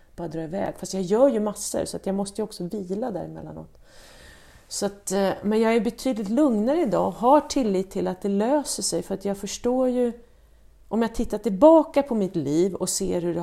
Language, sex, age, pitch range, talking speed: Swedish, female, 40-59, 165-205 Hz, 200 wpm